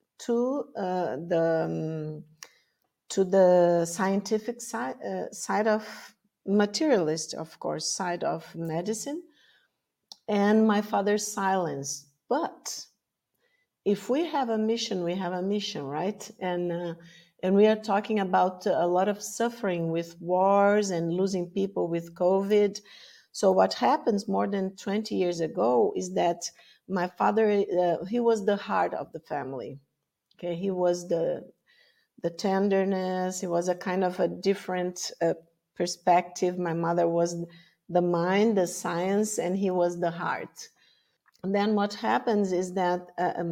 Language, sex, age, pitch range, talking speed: English, female, 50-69, 175-210 Hz, 140 wpm